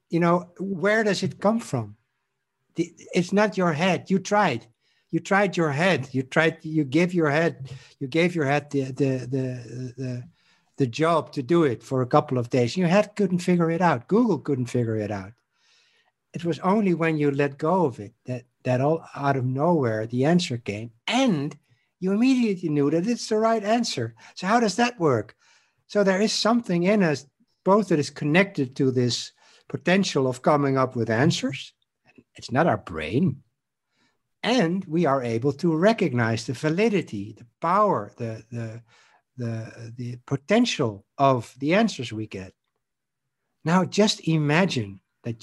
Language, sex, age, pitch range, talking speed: English, male, 60-79, 125-180 Hz, 175 wpm